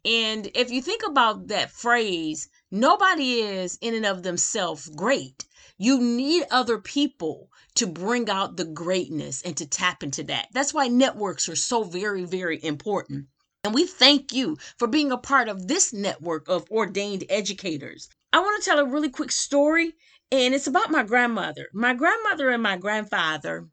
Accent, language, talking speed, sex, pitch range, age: American, English, 170 wpm, female, 180-255 Hz, 30-49